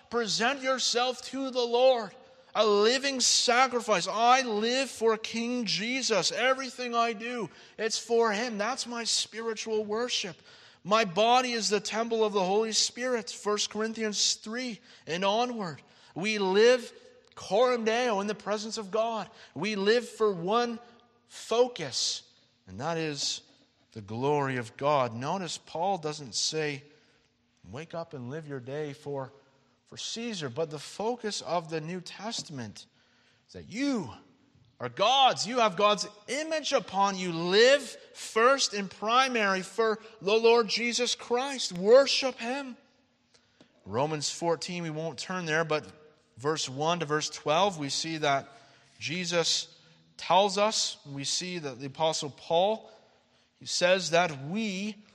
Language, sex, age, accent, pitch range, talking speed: English, male, 50-69, American, 160-235 Hz, 140 wpm